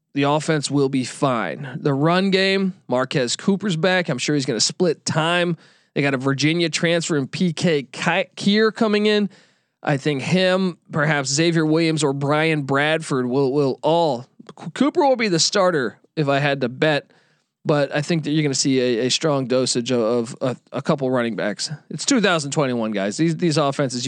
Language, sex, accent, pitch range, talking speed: English, male, American, 145-195 Hz, 185 wpm